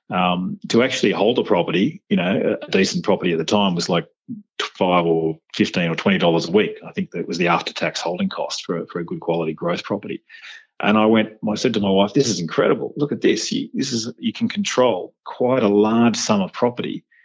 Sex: male